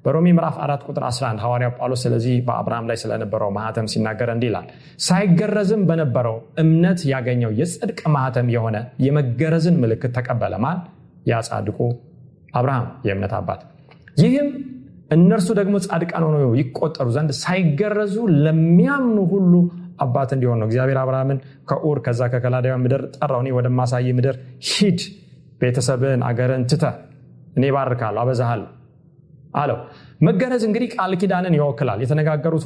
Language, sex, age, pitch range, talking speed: Amharic, male, 30-49, 125-180 Hz, 100 wpm